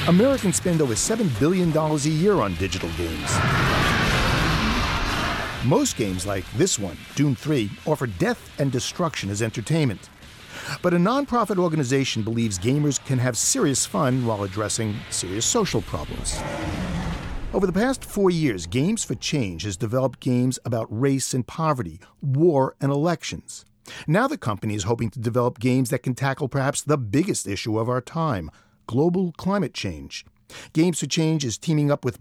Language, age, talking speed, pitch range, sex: English, 50-69, 155 wpm, 110-155 Hz, male